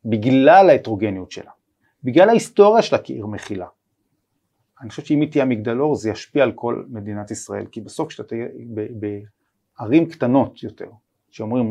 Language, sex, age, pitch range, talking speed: Hebrew, male, 30-49, 110-145 Hz, 145 wpm